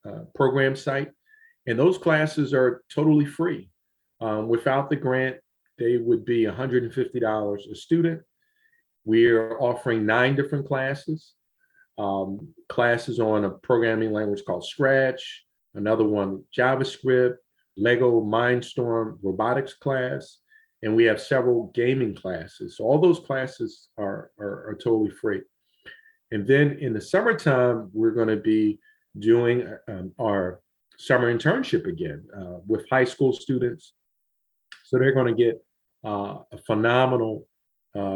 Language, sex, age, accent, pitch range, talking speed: English, male, 40-59, American, 110-140 Hz, 130 wpm